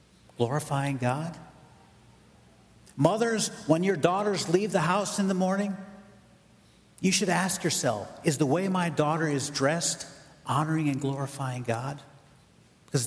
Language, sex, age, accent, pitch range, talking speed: English, male, 50-69, American, 140-195 Hz, 130 wpm